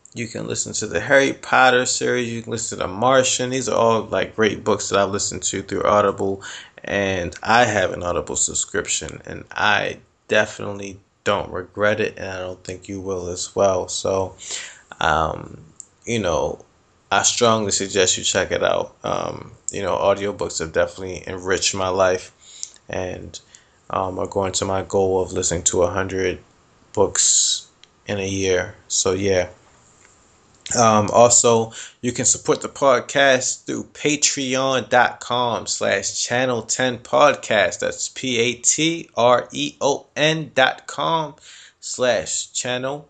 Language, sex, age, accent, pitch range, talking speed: English, male, 20-39, American, 95-130 Hz, 140 wpm